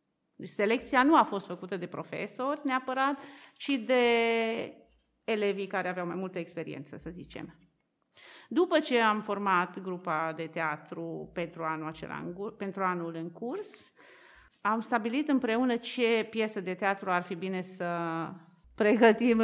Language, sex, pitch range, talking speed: Romanian, female, 180-230 Hz, 135 wpm